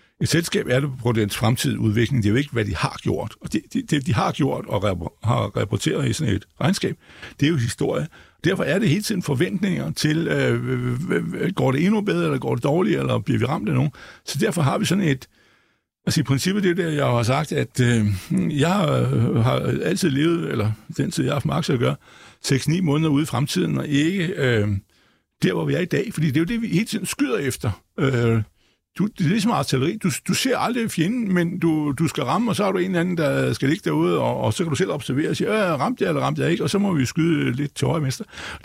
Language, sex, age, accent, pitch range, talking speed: Danish, male, 60-79, native, 120-175 Hz, 255 wpm